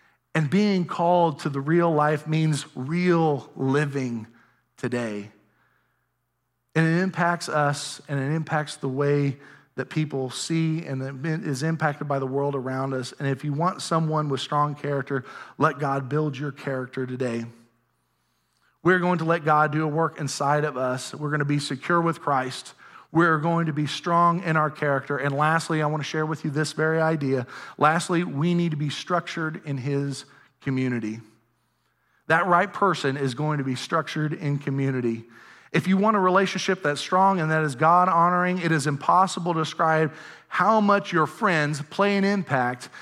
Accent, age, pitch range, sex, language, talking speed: American, 40-59, 140-170 Hz, male, English, 170 wpm